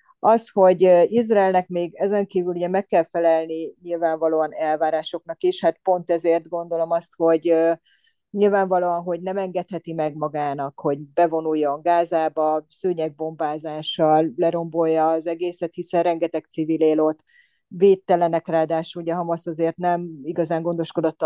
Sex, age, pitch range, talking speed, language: female, 30-49, 155-180 Hz, 120 wpm, Hungarian